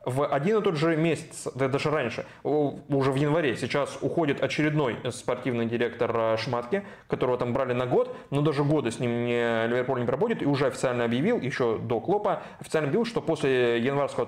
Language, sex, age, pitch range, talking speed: Russian, male, 20-39, 120-150 Hz, 180 wpm